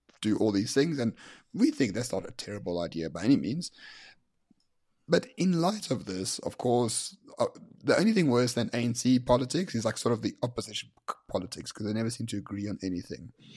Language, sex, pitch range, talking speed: English, male, 100-130 Hz, 200 wpm